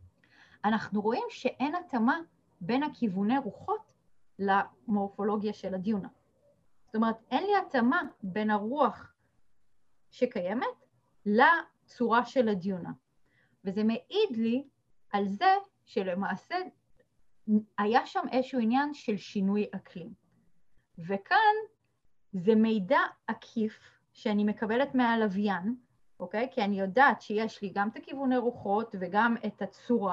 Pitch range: 205-260 Hz